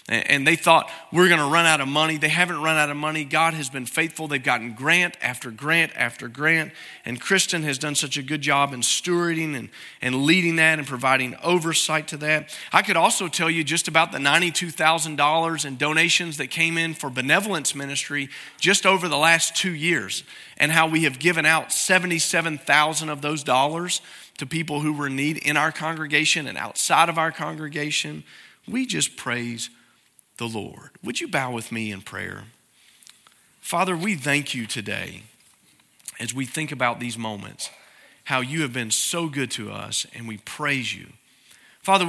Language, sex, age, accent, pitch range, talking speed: English, male, 40-59, American, 135-170 Hz, 185 wpm